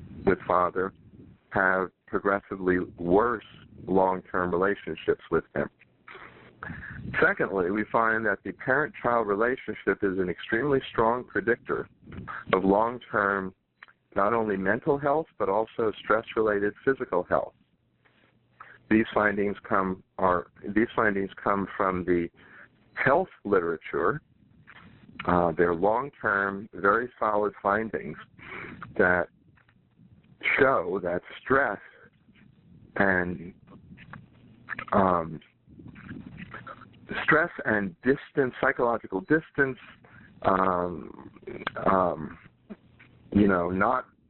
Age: 50-69